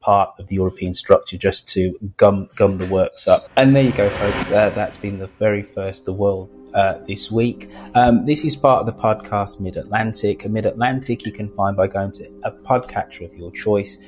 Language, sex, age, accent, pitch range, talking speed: English, male, 30-49, British, 95-130 Hz, 210 wpm